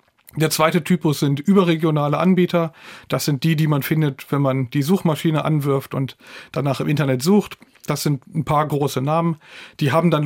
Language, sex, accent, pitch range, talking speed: German, male, German, 135-160 Hz, 180 wpm